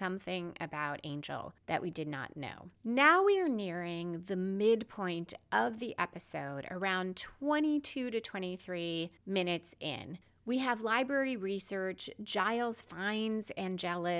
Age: 30-49